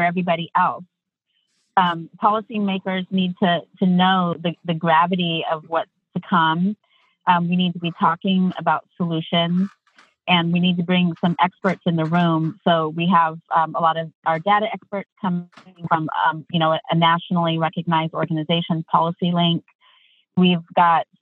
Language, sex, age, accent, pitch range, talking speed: English, female, 30-49, American, 165-180 Hz, 160 wpm